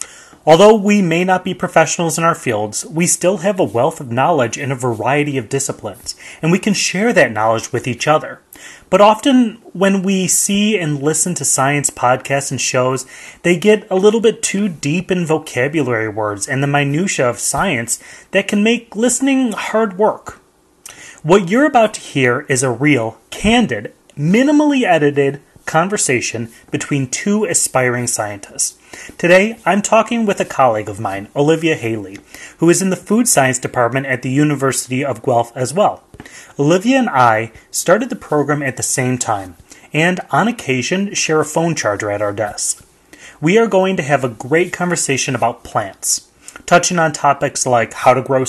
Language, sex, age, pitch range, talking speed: English, male, 30-49, 130-195 Hz, 175 wpm